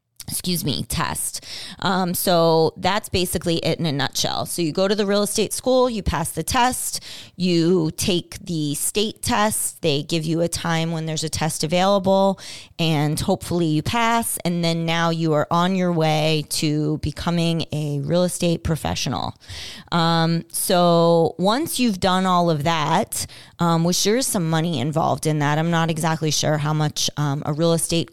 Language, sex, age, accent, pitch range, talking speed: English, female, 20-39, American, 150-175 Hz, 175 wpm